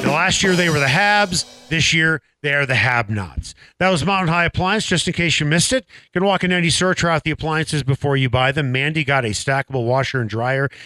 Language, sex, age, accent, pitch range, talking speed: English, male, 40-59, American, 115-160 Hz, 250 wpm